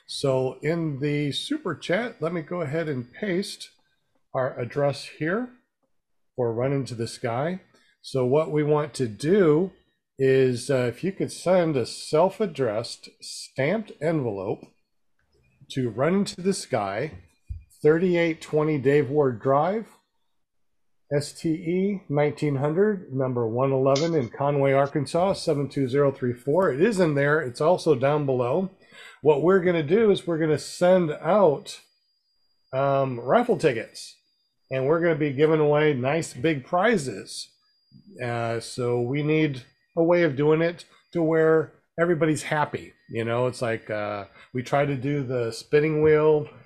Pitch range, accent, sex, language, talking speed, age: 130-165 Hz, American, male, English, 140 wpm, 50-69